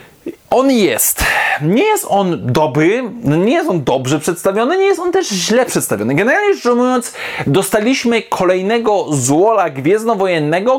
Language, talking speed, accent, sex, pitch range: Polish, 130 wpm, native, male, 170-235 Hz